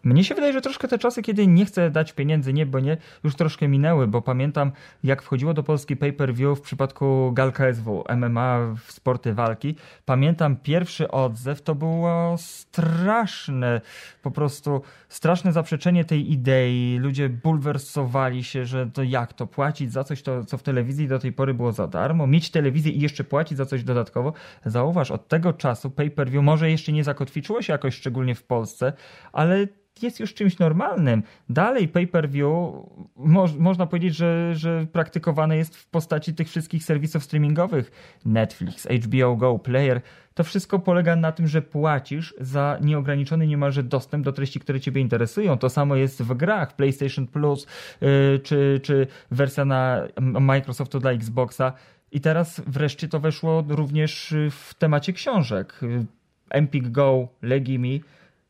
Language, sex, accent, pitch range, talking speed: Polish, male, native, 130-165 Hz, 155 wpm